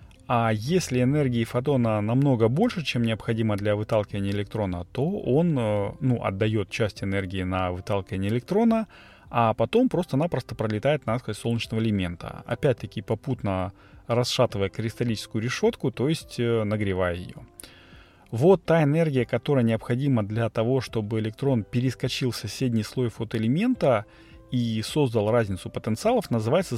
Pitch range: 105-130 Hz